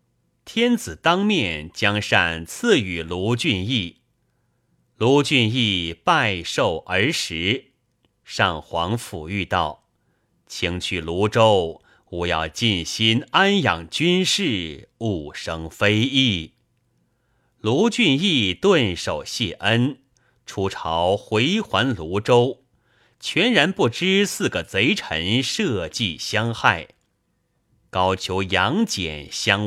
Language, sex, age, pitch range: Chinese, male, 30-49, 95-145 Hz